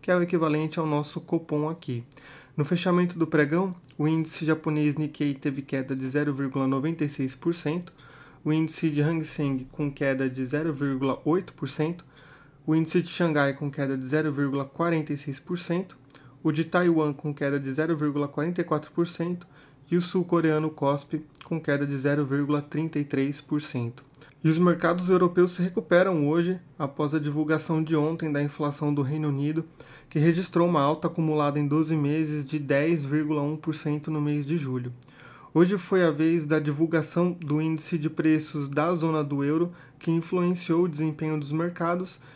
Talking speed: 145 wpm